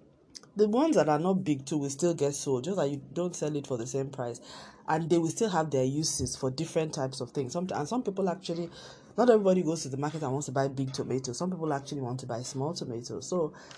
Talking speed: 255 wpm